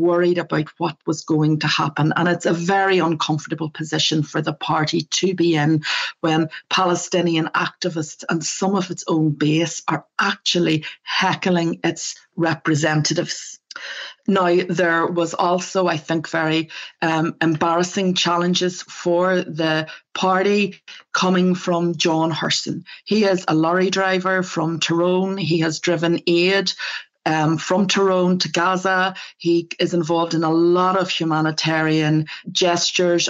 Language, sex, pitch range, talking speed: English, female, 160-180 Hz, 135 wpm